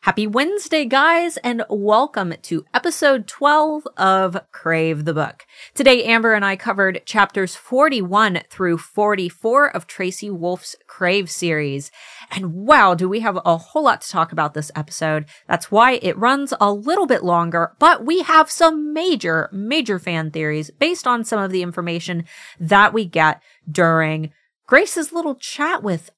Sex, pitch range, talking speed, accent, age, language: female, 165-245 Hz, 160 wpm, American, 30-49, English